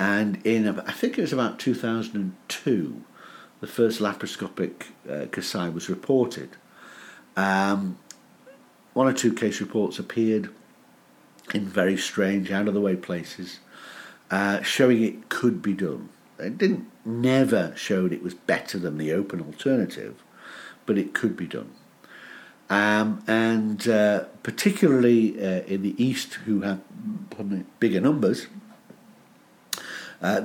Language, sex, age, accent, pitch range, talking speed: English, male, 60-79, British, 95-120 Hz, 125 wpm